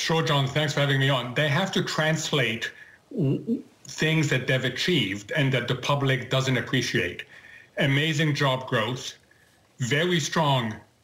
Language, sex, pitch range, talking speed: English, male, 135-160 Hz, 140 wpm